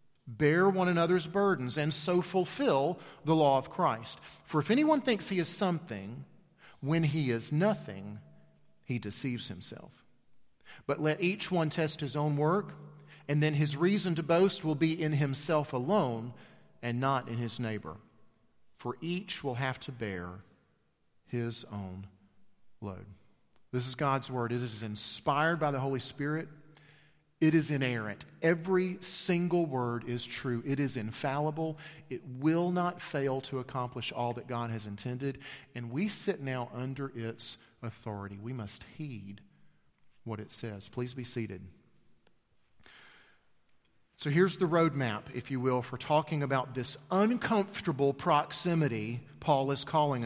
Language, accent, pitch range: English, American, 120-165 Hz